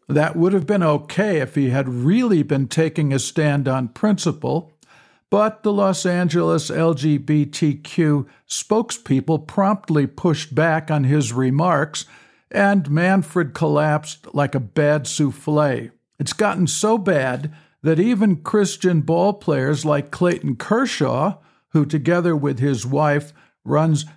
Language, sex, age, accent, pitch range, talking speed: English, male, 60-79, American, 145-180 Hz, 125 wpm